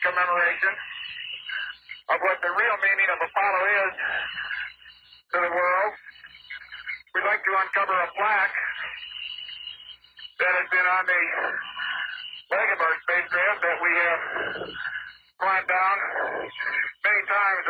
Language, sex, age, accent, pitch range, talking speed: English, male, 50-69, American, 180-295 Hz, 115 wpm